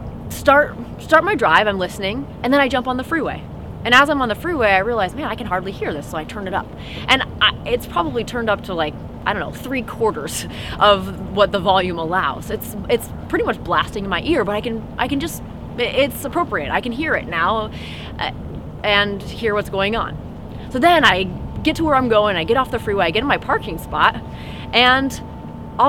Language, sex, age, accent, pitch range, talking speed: English, female, 20-39, American, 200-260 Hz, 220 wpm